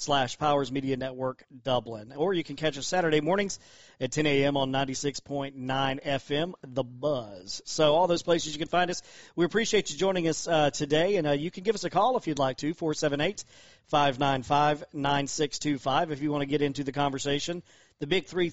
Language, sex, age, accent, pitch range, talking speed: English, male, 40-59, American, 140-165 Hz, 190 wpm